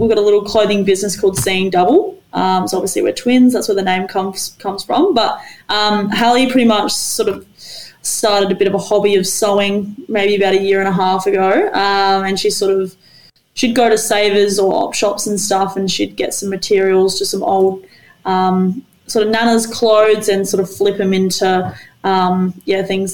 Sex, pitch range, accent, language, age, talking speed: female, 190-210 Hz, Australian, English, 20-39, 210 wpm